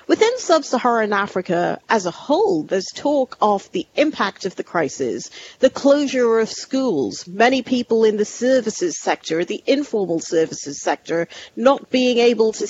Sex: female